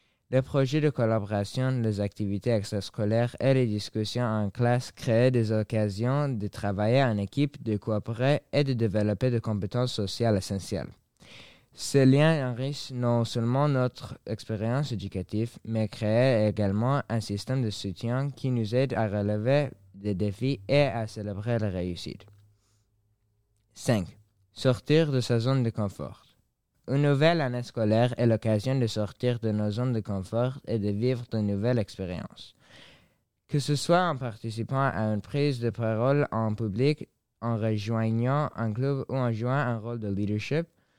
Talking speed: 150 wpm